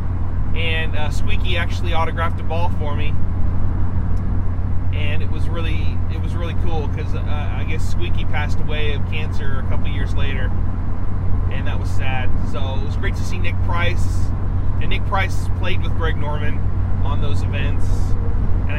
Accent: American